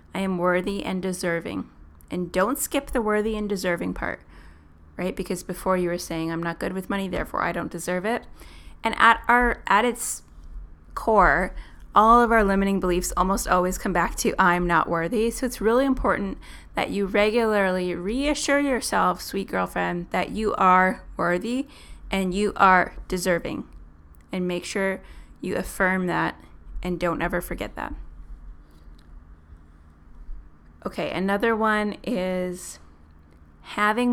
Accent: American